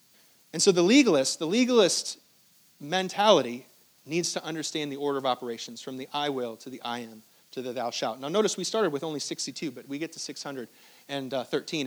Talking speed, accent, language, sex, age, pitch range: 190 wpm, American, English, male, 30-49, 145-205 Hz